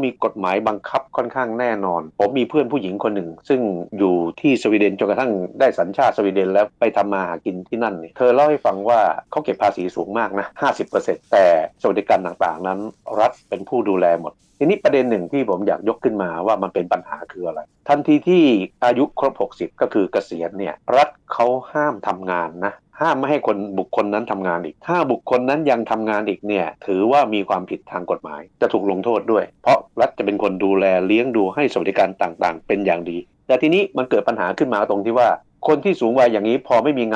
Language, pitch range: Thai, 90-125 Hz